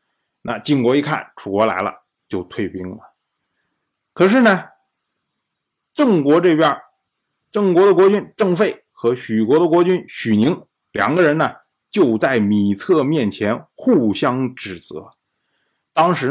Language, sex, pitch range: Chinese, male, 150-220 Hz